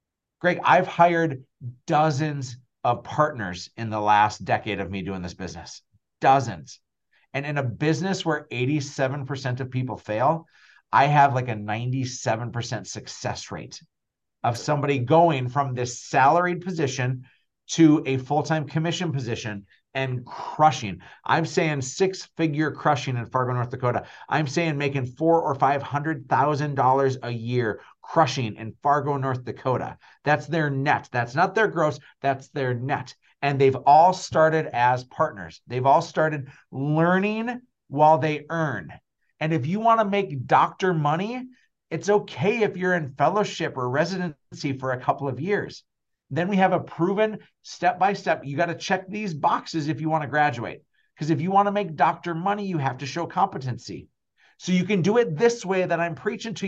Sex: male